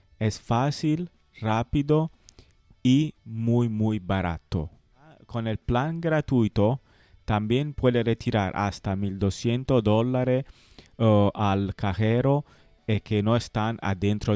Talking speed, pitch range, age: 100 wpm, 100-120 Hz, 30-49